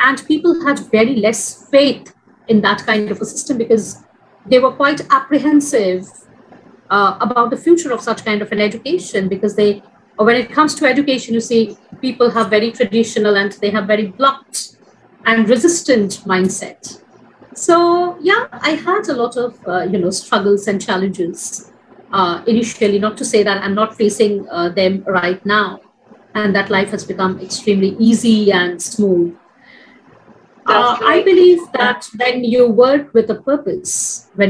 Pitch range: 195-260 Hz